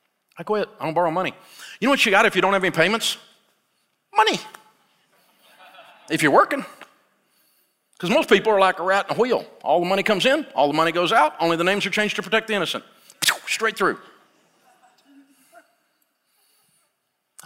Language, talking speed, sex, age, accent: English, 180 wpm, male, 50-69, American